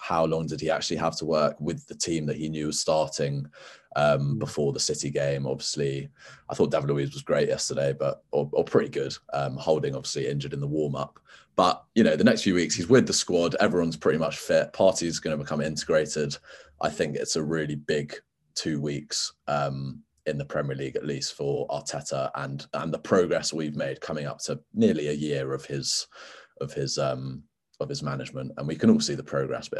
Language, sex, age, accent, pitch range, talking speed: English, male, 20-39, British, 70-80 Hz, 210 wpm